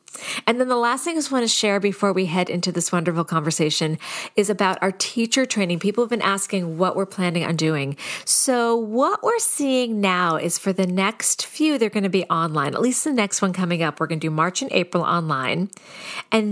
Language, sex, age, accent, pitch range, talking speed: English, female, 40-59, American, 165-220 Hz, 225 wpm